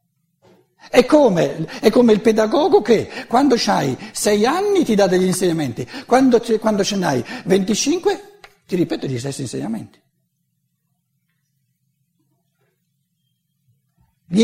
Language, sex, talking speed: Italian, male, 110 wpm